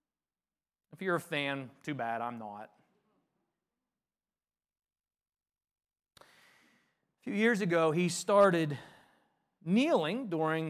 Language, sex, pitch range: English, male, 175-275 Hz